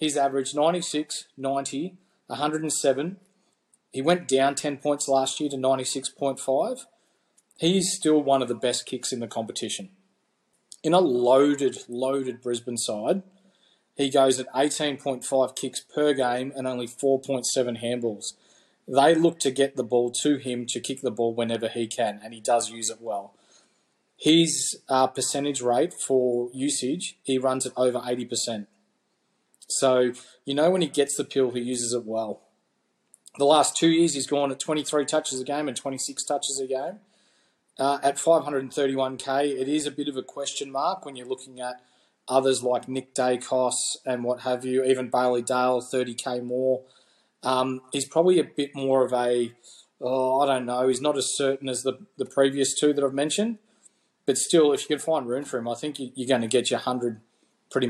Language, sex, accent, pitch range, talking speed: English, male, Australian, 125-145 Hz, 175 wpm